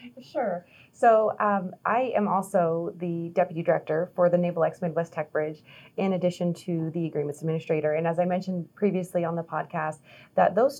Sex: female